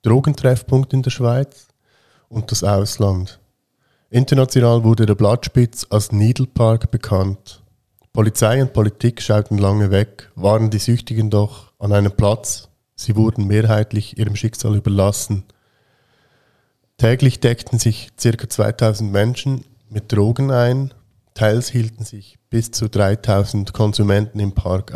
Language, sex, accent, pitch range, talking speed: German, male, German, 100-115 Hz, 125 wpm